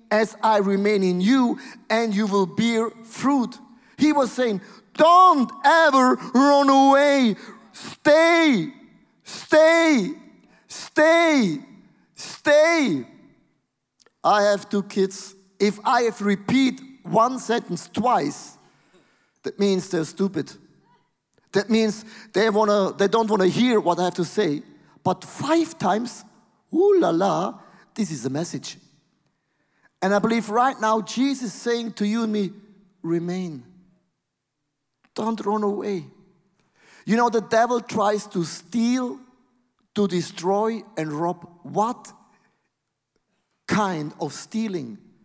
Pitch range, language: 180-235 Hz, English